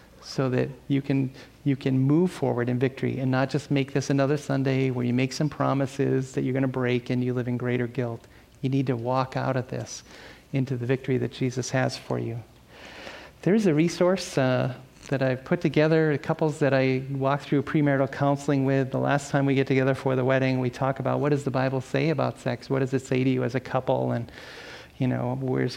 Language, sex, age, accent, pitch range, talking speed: English, male, 40-59, American, 125-140 Hz, 220 wpm